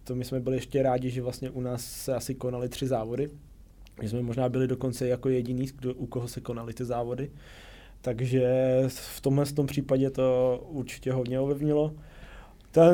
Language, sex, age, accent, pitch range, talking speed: Czech, male, 20-39, native, 125-140 Hz, 180 wpm